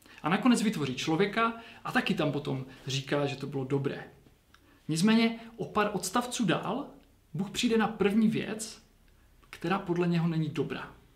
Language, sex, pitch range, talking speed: Czech, male, 145-195 Hz, 150 wpm